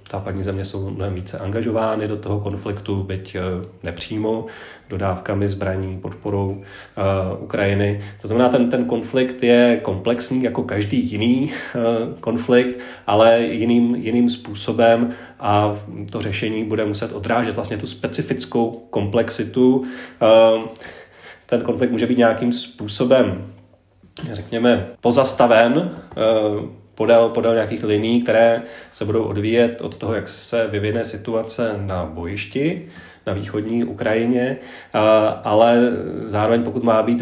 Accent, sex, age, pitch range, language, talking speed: native, male, 30-49, 105-120 Hz, Czech, 120 wpm